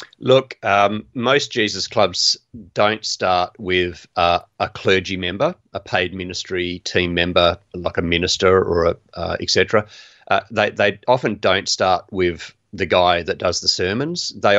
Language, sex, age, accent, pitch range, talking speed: English, male, 40-59, Australian, 90-110 Hz, 150 wpm